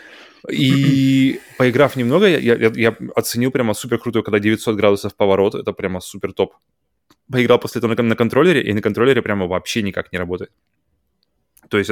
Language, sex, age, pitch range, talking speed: Russian, male, 20-39, 100-125 Hz, 165 wpm